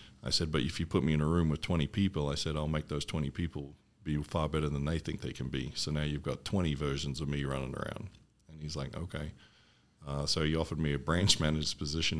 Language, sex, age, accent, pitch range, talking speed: English, male, 40-59, American, 70-80 Hz, 255 wpm